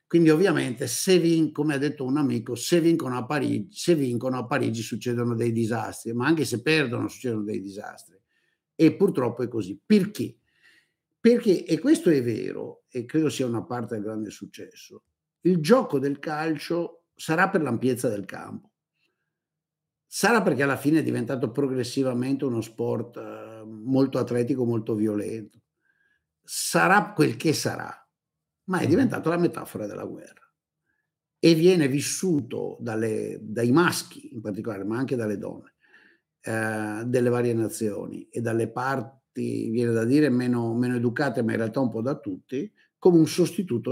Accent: native